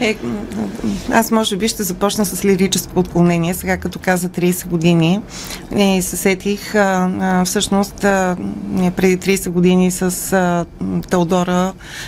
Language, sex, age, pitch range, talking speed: Bulgarian, female, 30-49, 180-200 Hz, 125 wpm